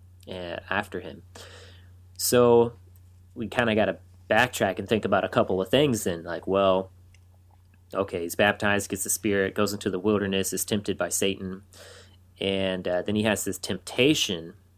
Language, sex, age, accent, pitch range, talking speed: English, male, 30-49, American, 90-100 Hz, 160 wpm